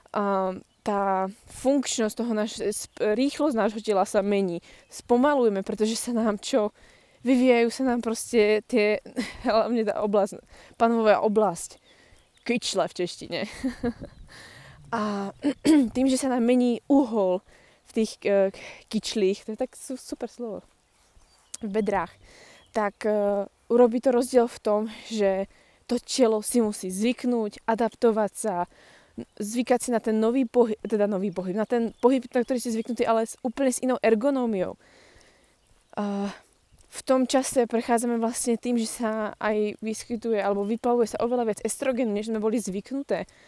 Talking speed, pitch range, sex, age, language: 140 wpm, 205-240 Hz, female, 20-39, Slovak